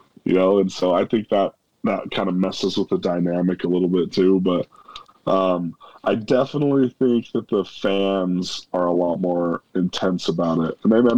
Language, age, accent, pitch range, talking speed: English, 20-39, American, 90-100 Hz, 195 wpm